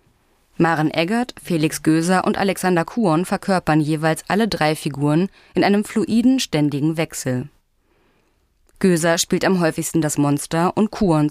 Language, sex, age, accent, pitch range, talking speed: German, female, 20-39, German, 150-195 Hz, 135 wpm